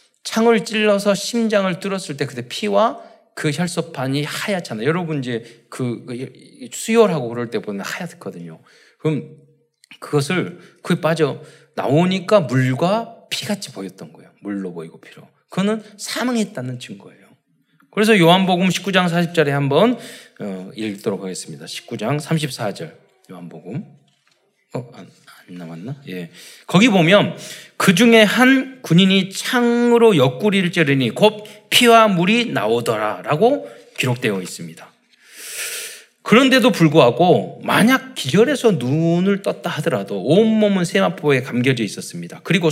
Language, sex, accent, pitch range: Korean, male, native, 145-215 Hz